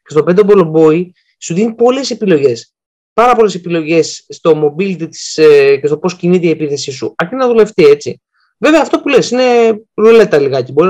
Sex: male